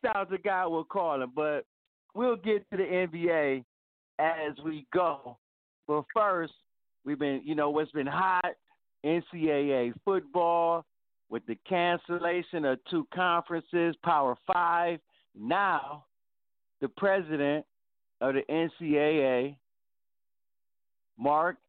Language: English